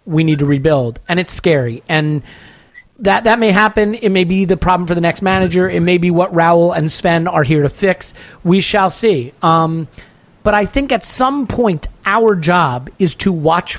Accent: American